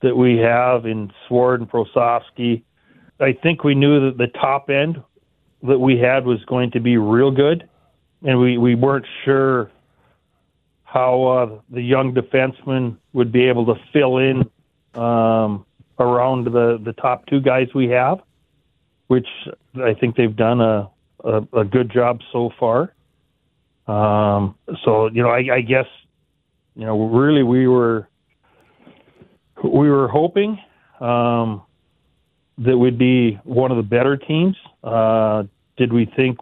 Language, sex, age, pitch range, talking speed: English, male, 40-59, 115-130 Hz, 145 wpm